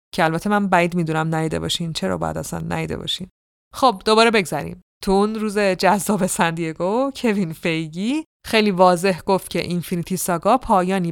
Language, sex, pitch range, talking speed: Persian, female, 170-200 Hz, 155 wpm